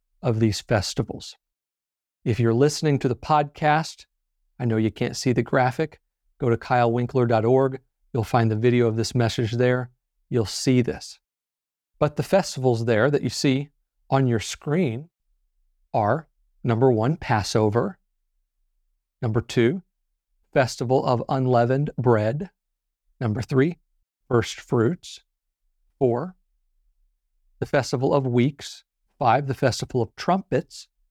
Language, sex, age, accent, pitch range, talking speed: English, male, 40-59, American, 100-140 Hz, 125 wpm